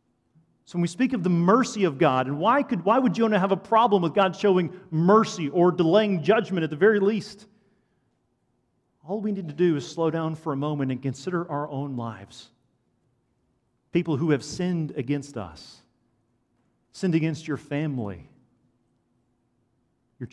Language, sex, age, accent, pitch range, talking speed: English, male, 40-59, American, 125-190 Hz, 165 wpm